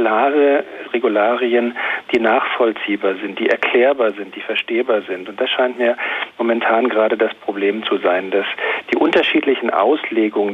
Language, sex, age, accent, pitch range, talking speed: German, male, 50-69, German, 110-130 Hz, 135 wpm